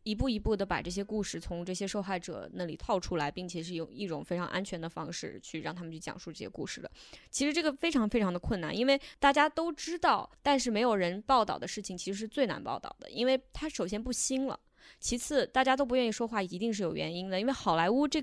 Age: 20-39